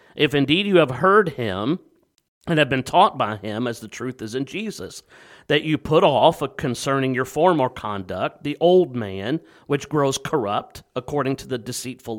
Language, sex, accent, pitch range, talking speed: English, male, American, 125-160 Hz, 175 wpm